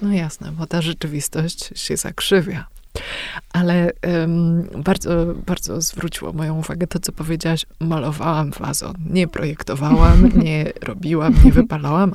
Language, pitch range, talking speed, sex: Polish, 150-175 Hz, 125 wpm, female